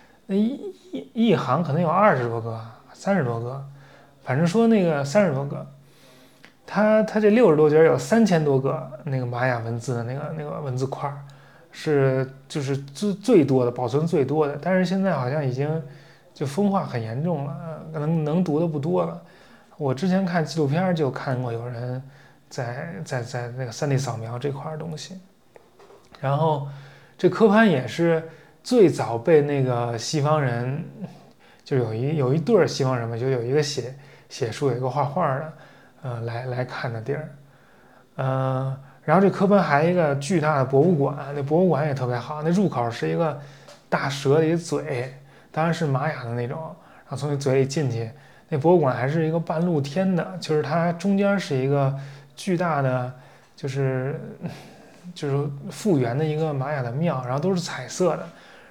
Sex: male